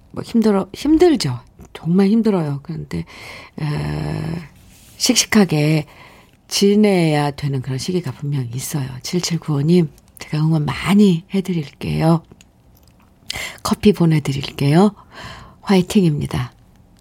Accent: native